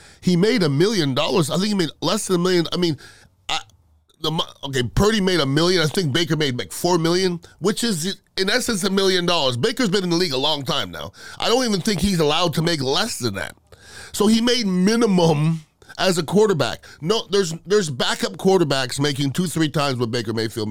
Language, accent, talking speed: English, American, 215 wpm